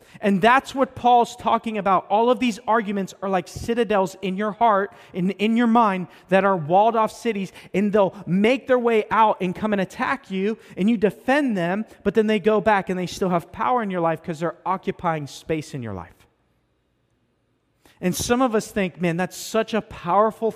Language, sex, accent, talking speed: English, male, American, 205 wpm